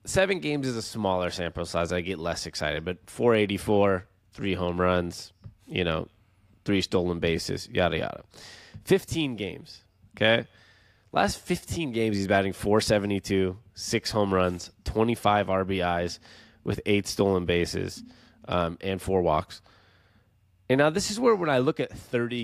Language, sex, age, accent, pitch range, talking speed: English, male, 20-39, American, 95-120 Hz, 145 wpm